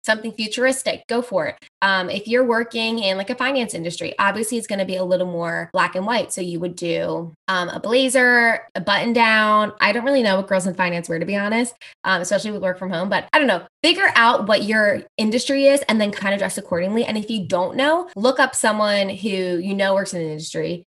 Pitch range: 185-235 Hz